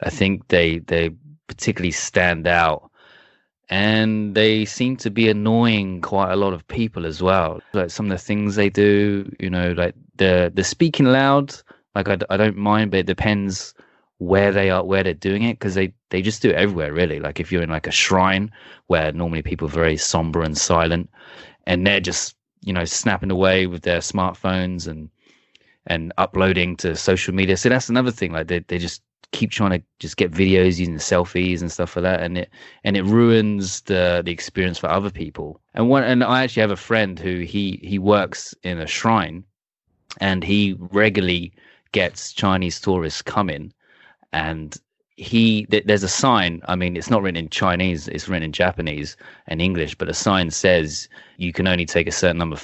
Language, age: English, 20-39